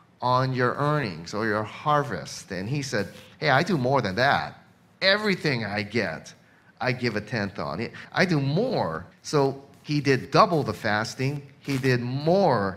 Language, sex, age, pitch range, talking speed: English, male, 30-49, 105-150 Hz, 170 wpm